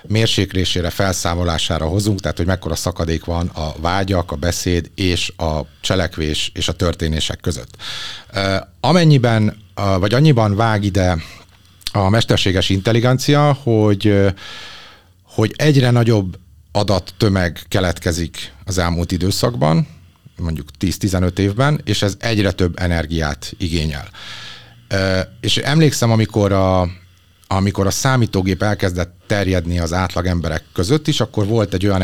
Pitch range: 90-110 Hz